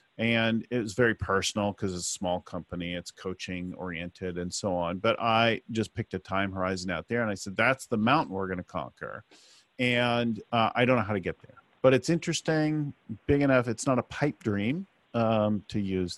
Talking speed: 210 wpm